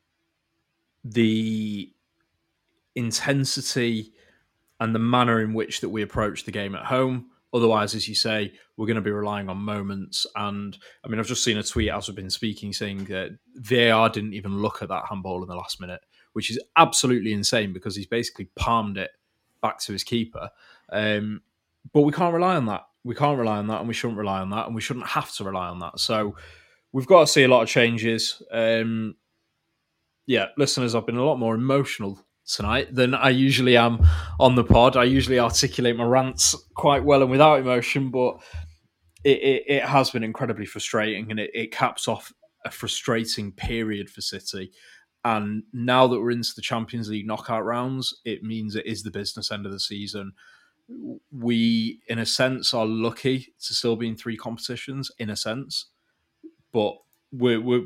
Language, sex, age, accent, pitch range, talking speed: English, male, 20-39, British, 105-125 Hz, 185 wpm